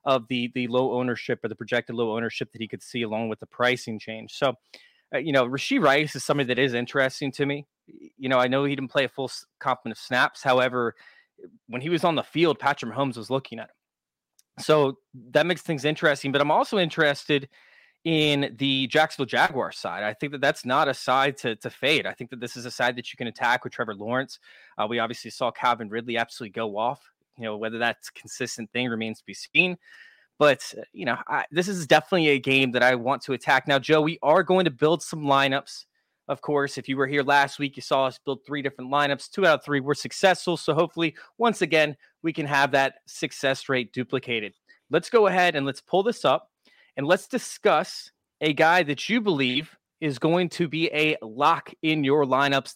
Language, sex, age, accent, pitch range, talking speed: English, male, 20-39, American, 125-155 Hz, 220 wpm